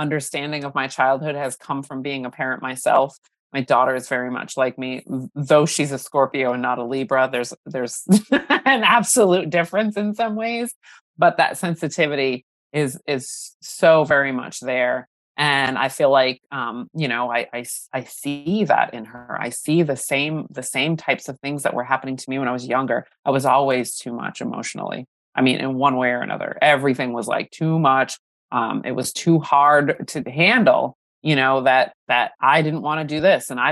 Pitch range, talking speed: 130-170 Hz, 200 wpm